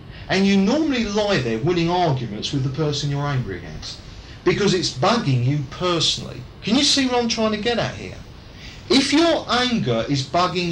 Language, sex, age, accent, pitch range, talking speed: English, male, 40-59, British, 135-195 Hz, 185 wpm